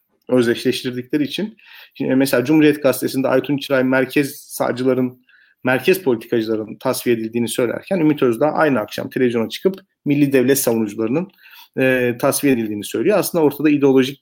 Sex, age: male, 40-59